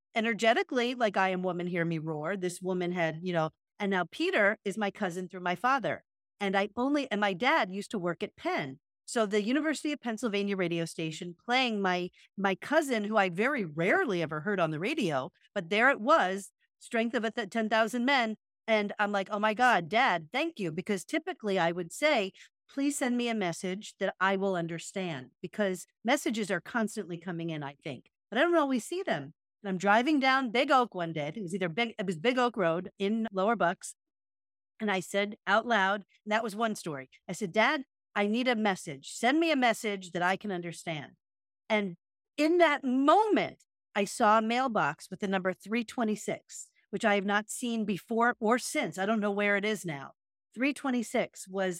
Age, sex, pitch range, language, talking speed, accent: 50-69, female, 185-235 Hz, English, 200 wpm, American